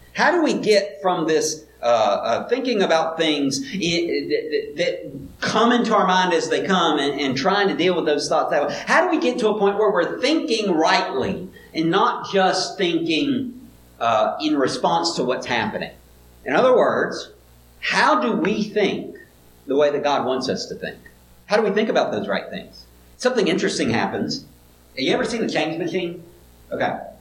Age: 50-69